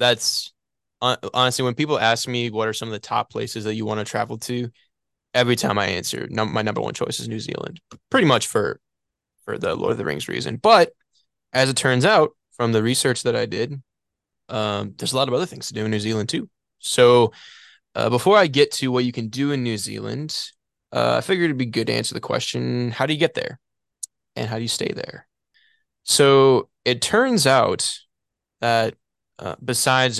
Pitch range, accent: 110-125 Hz, American